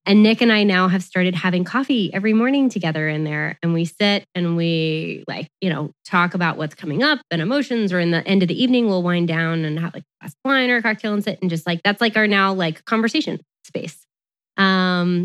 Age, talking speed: 20-39, 245 wpm